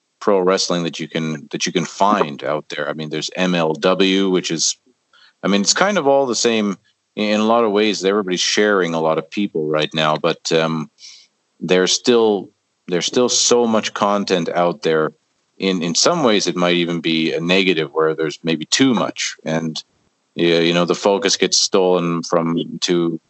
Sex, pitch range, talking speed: male, 80-90 Hz, 190 wpm